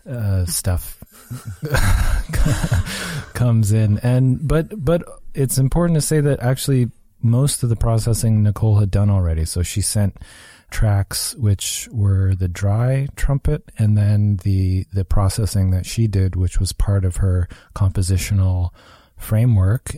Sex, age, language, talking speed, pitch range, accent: male, 30-49, English, 135 wpm, 95-115 Hz, American